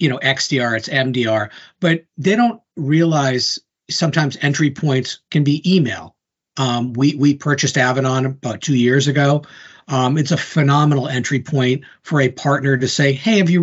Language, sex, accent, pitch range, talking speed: English, male, American, 130-165 Hz, 165 wpm